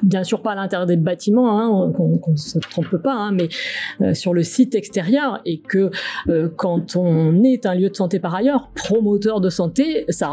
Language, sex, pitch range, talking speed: French, female, 175-235 Hz, 210 wpm